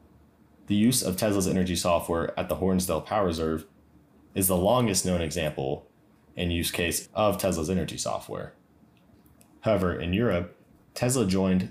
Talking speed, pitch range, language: 145 wpm, 85-100 Hz, English